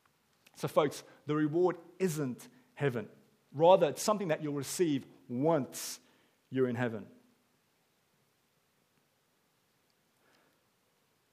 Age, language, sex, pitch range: 40-59, English, male, 115-145 Hz